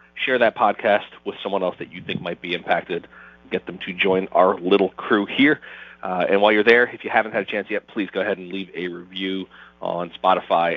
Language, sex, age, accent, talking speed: English, male, 30-49, American, 230 wpm